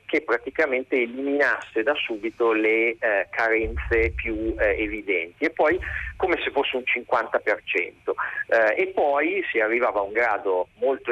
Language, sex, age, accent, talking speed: Italian, male, 40-59, native, 145 wpm